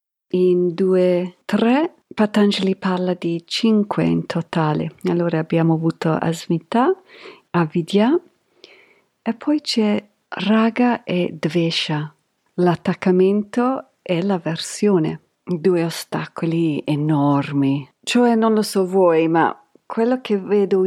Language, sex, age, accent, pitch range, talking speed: Italian, female, 50-69, native, 155-210 Hz, 100 wpm